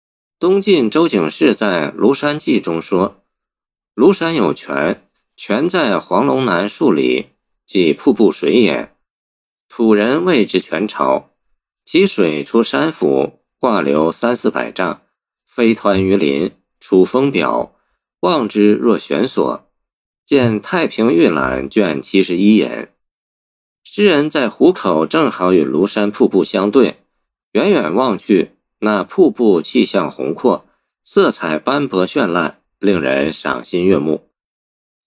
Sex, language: male, Chinese